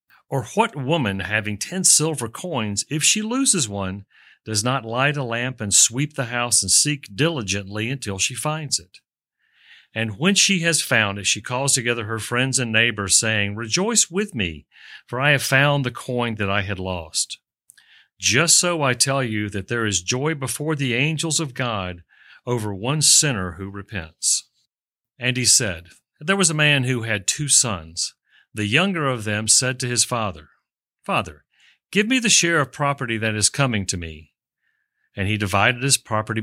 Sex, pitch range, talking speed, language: male, 105-145 Hz, 180 wpm, English